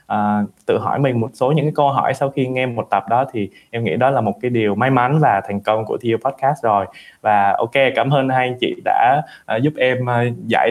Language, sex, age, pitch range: Vietnamese, male, 20-39, 105-135 Hz